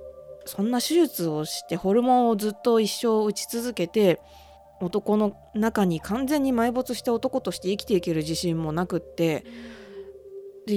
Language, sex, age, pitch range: Japanese, female, 20-39, 170-240 Hz